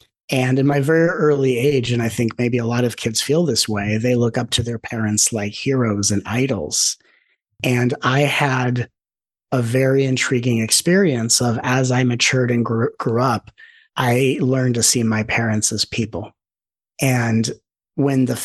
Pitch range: 115-130 Hz